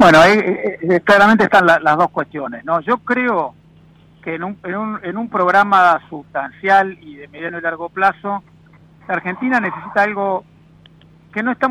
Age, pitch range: 50-69, 155-190 Hz